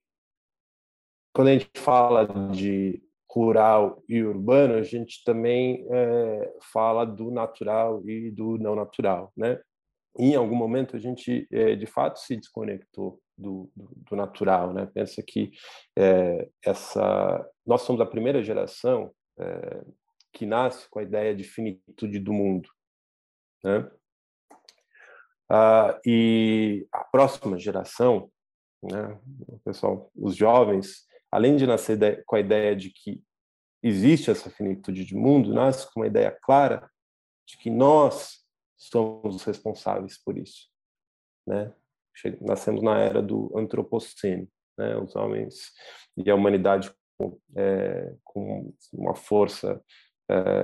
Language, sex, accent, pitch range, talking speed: Portuguese, male, Brazilian, 100-125 Hz, 130 wpm